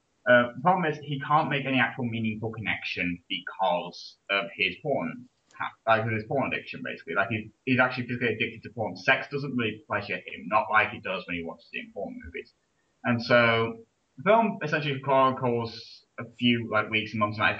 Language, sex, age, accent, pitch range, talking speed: English, male, 10-29, British, 110-155 Hz, 200 wpm